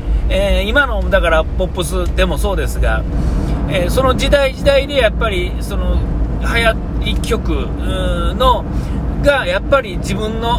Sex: male